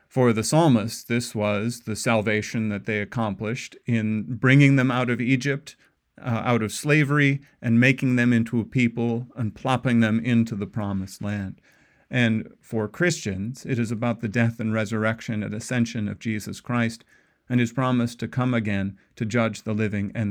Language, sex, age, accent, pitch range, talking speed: English, male, 40-59, American, 110-140 Hz, 175 wpm